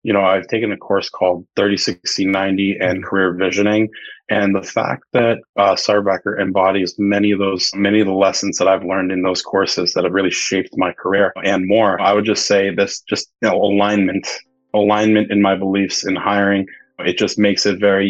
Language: English